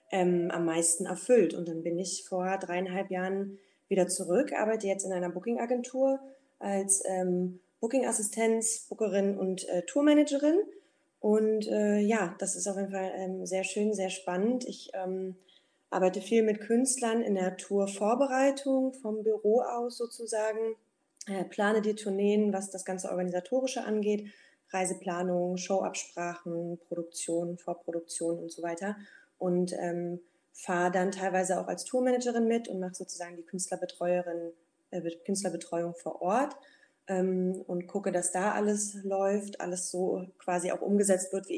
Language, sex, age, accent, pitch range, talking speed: German, female, 20-39, German, 175-215 Hz, 145 wpm